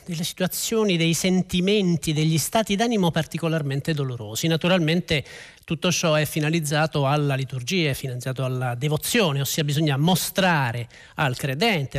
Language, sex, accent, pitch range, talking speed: Italian, male, native, 145-195 Hz, 125 wpm